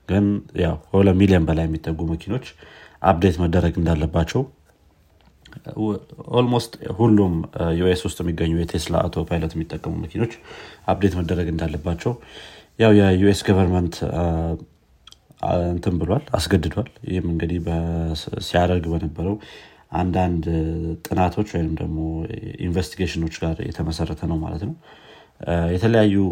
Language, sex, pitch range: Amharic, male, 80-95 Hz